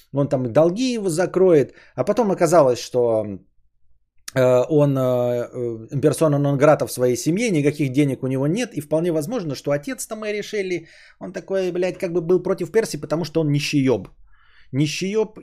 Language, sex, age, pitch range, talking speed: Bulgarian, male, 20-39, 120-165 Hz, 165 wpm